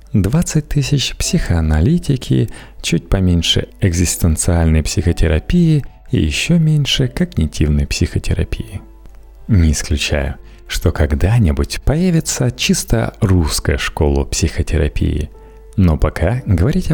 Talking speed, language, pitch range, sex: 85 wpm, Russian, 80-125 Hz, male